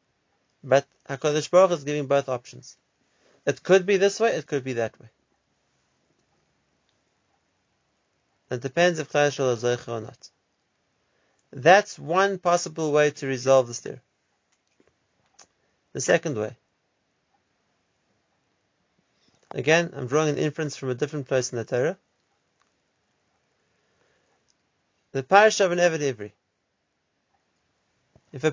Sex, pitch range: male, 135-175 Hz